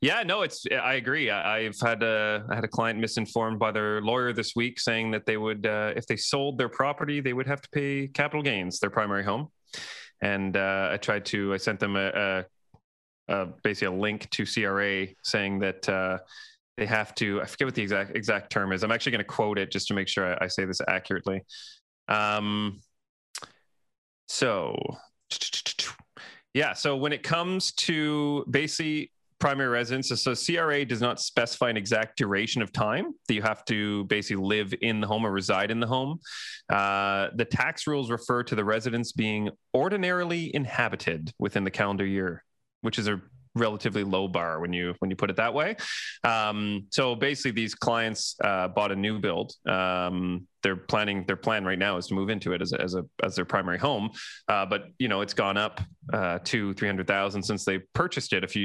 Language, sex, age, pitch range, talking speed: English, male, 30-49, 95-120 Hz, 200 wpm